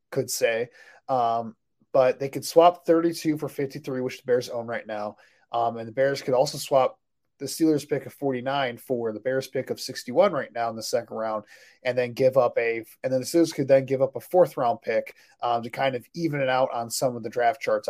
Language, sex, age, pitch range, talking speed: English, male, 20-39, 115-145 Hz, 235 wpm